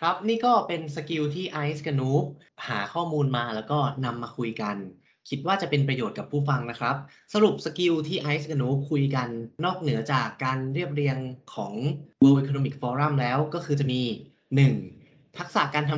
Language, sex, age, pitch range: Thai, male, 20-39, 125-150 Hz